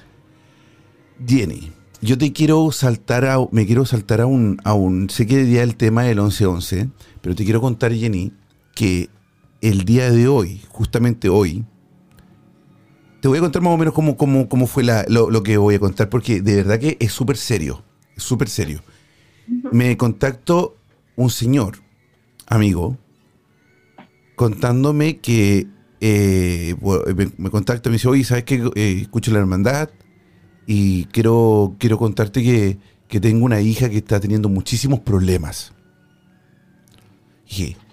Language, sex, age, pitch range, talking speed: Spanish, male, 40-59, 100-130 Hz, 155 wpm